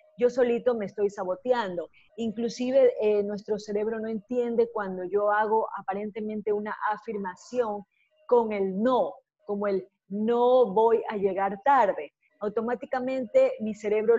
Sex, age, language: female, 40-59, Spanish